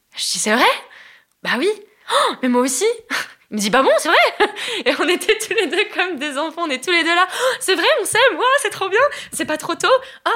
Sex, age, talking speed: female, 20-39, 270 wpm